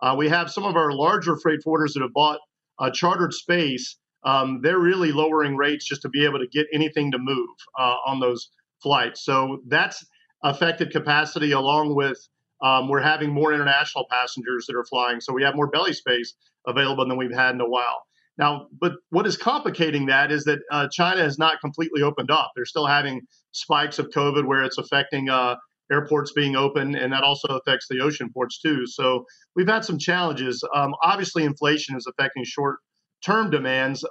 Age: 40-59